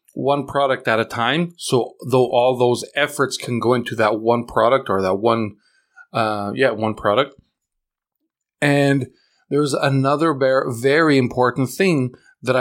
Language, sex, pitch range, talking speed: English, male, 115-145 Hz, 145 wpm